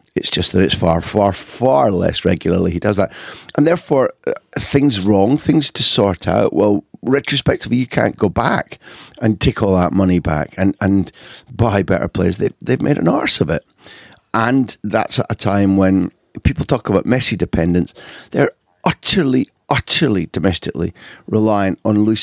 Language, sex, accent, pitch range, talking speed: English, male, British, 95-120 Hz, 165 wpm